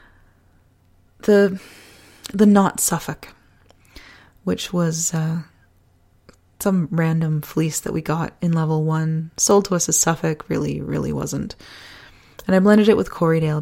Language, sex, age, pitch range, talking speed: English, female, 20-39, 105-175 Hz, 130 wpm